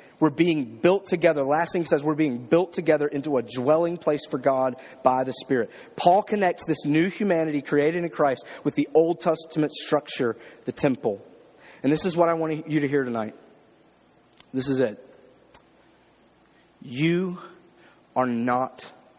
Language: English